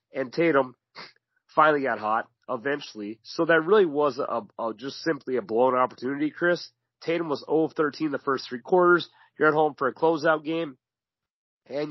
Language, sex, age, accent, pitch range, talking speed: English, male, 30-49, American, 120-155 Hz, 155 wpm